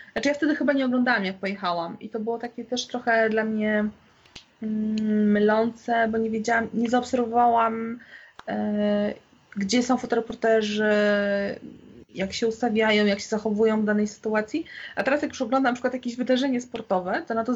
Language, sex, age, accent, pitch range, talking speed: Polish, female, 20-39, native, 200-250 Hz, 170 wpm